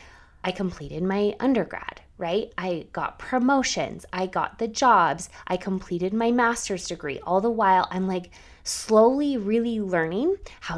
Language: English